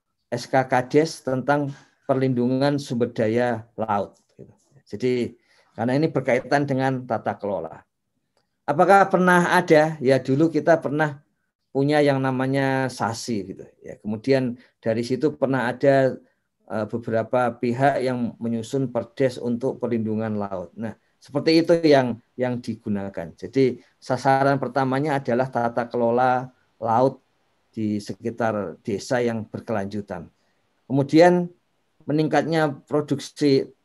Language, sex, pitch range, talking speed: Indonesian, male, 115-140 Hz, 105 wpm